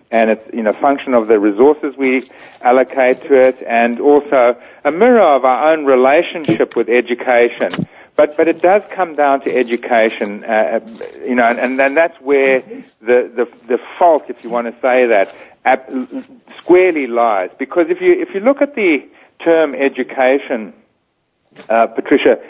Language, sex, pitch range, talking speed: English, male, 125-170 Hz, 170 wpm